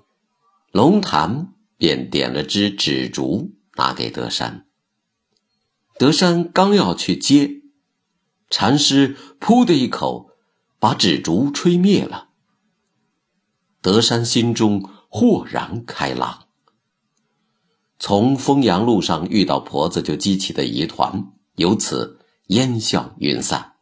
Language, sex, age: Chinese, male, 50-69